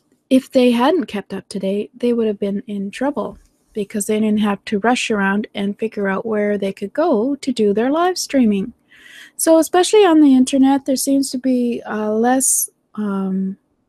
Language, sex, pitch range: English, female, 205-250 Hz